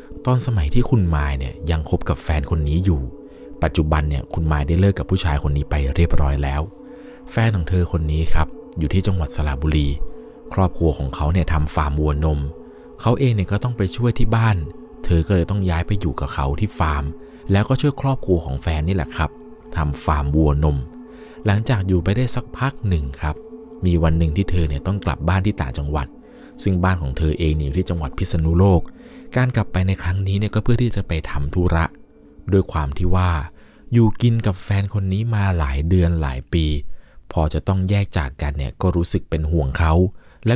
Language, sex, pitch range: Thai, male, 75-100 Hz